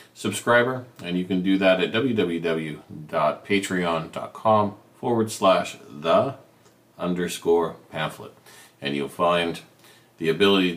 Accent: American